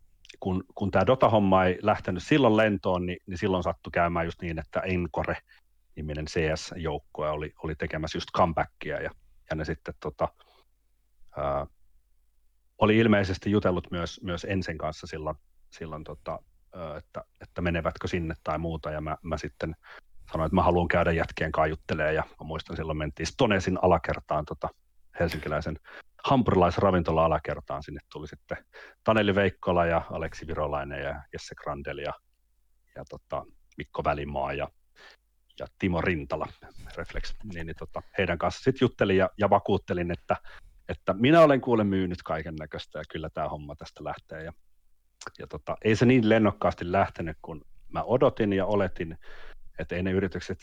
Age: 40-59